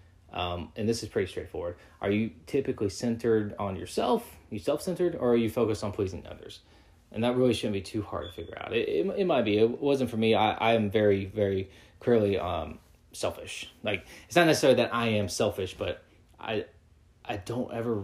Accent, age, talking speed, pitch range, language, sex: American, 20-39, 205 wpm, 95-115 Hz, English, male